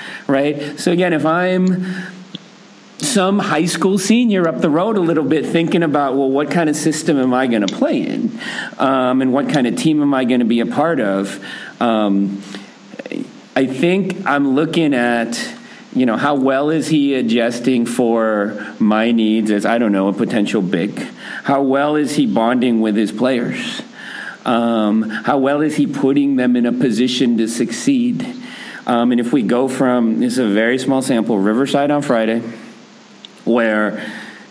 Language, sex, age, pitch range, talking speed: English, male, 40-59, 120-180 Hz, 175 wpm